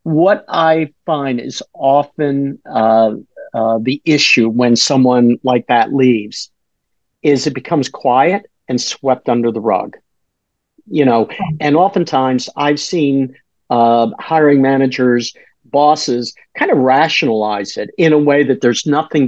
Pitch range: 125-155 Hz